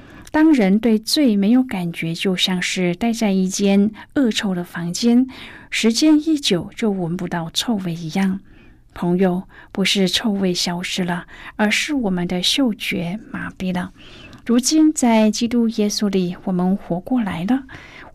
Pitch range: 180-235 Hz